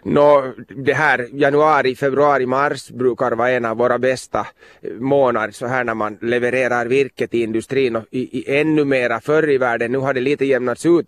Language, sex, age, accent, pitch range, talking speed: Swedish, male, 30-49, Finnish, 120-140 Hz, 190 wpm